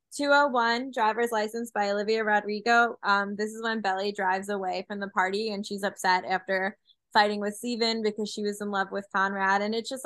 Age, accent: 10-29, American